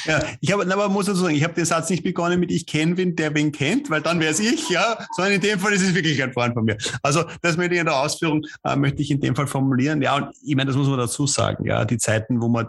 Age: 30-49